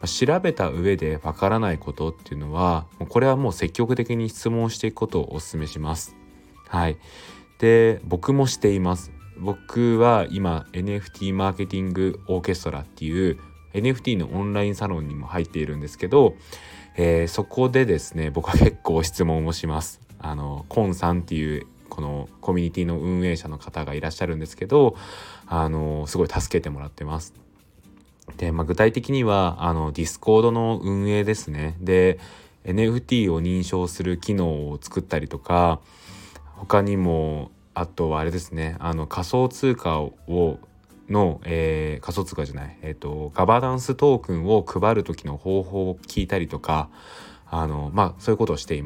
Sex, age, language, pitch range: male, 20-39, Japanese, 80-100 Hz